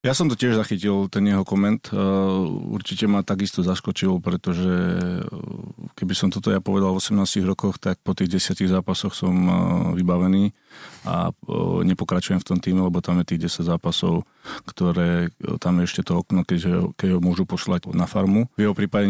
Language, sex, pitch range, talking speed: Slovak, male, 95-105 Hz, 175 wpm